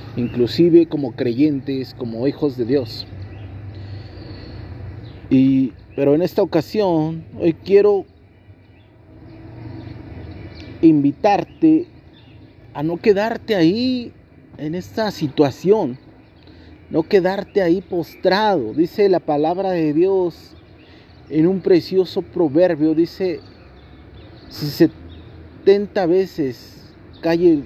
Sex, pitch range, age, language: male, 115-195 Hz, 40-59, Spanish